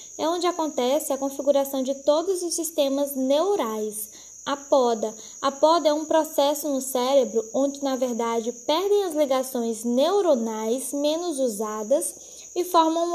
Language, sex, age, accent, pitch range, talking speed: Portuguese, female, 10-29, Brazilian, 255-315 Hz, 135 wpm